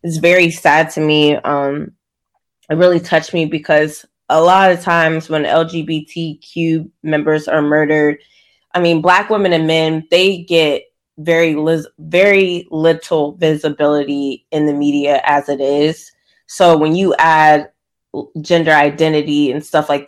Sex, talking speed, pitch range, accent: female, 140 wpm, 150-170 Hz, American